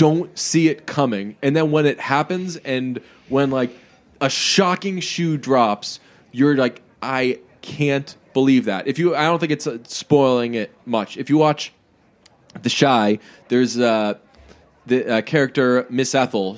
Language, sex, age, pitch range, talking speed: English, male, 20-39, 120-160 Hz, 160 wpm